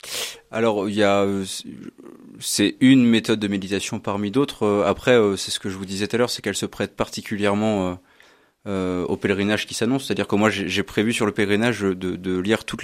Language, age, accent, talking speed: French, 20-39, French, 220 wpm